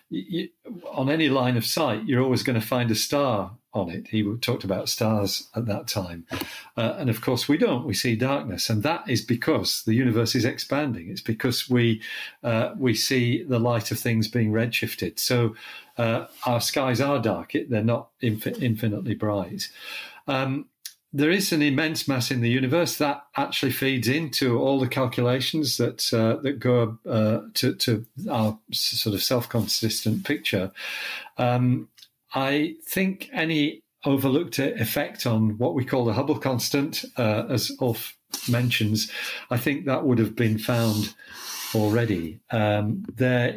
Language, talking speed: English, 160 wpm